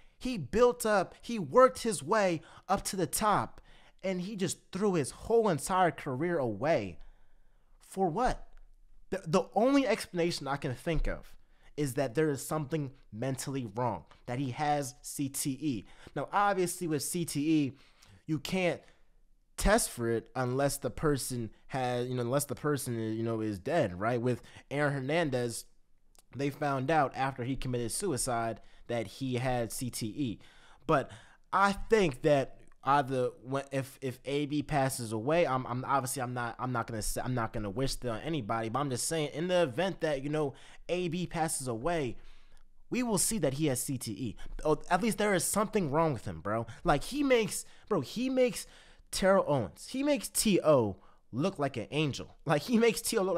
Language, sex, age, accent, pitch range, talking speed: English, male, 20-39, American, 125-175 Hz, 175 wpm